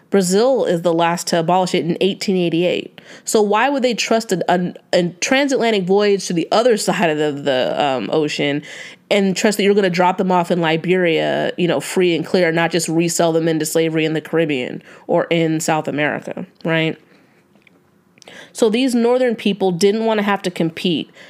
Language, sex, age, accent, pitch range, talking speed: English, female, 30-49, American, 165-205 Hz, 190 wpm